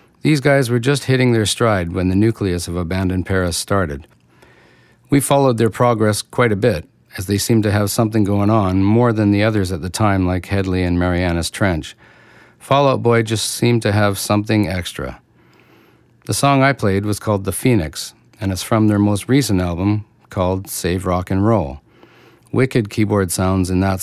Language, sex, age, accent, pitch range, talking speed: English, male, 50-69, American, 90-115 Hz, 185 wpm